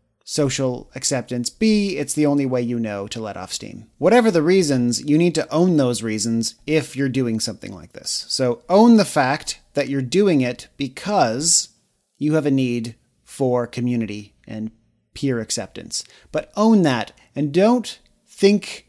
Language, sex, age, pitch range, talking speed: English, male, 30-49, 120-150 Hz, 165 wpm